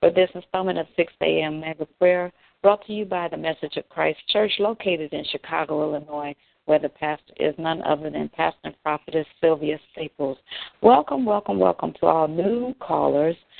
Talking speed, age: 175 wpm, 60-79